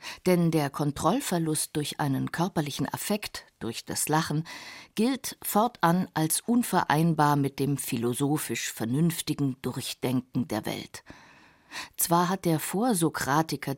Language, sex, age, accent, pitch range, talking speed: German, female, 50-69, German, 140-180 Hz, 110 wpm